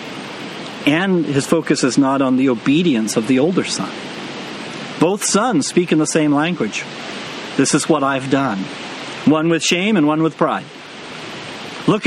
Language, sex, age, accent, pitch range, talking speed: English, male, 50-69, American, 155-200 Hz, 160 wpm